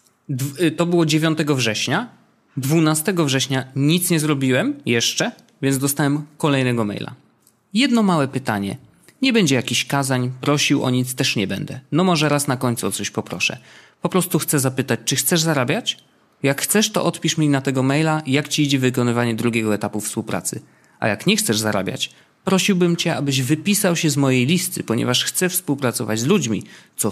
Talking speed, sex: 170 wpm, male